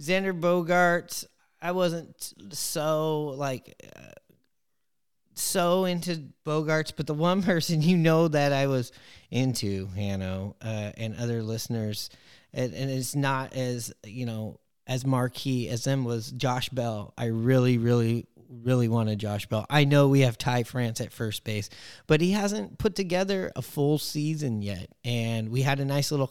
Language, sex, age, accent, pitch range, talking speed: English, male, 30-49, American, 120-155 Hz, 160 wpm